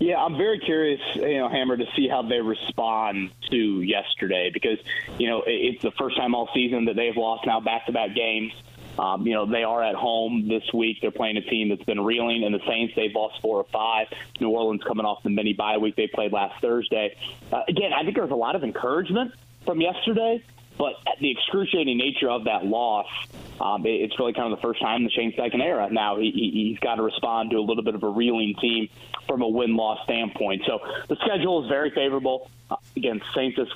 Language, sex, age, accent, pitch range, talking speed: English, male, 30-49, American, 110-130 Hz, 225 wpm